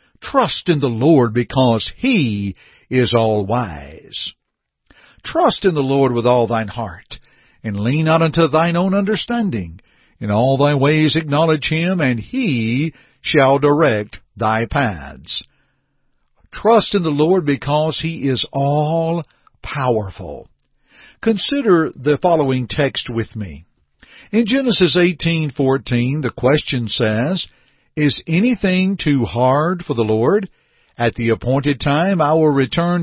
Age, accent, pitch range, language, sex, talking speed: 60-79, American, 120-170 Hz, English, male, 125 wpm